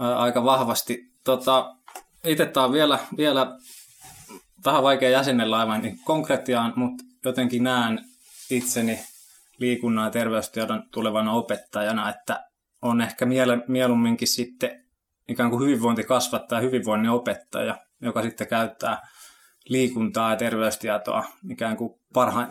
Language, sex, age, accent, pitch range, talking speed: Finnish, male, 20-39, native, 110-130 Hz, 110 wpm